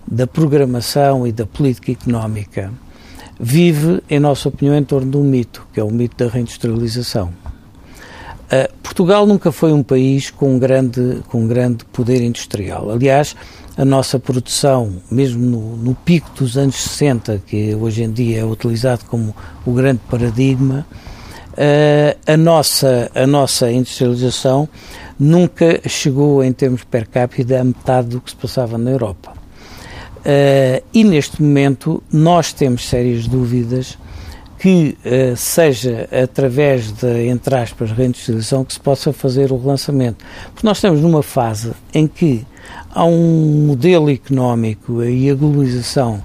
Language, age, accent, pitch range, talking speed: Portuguese, 60-79, Portuguese, 120-140 Hz, 140 wpm